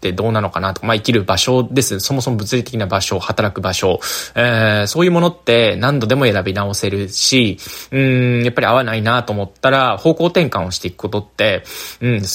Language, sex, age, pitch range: Japanese, male, 20-39, 100-165 Hz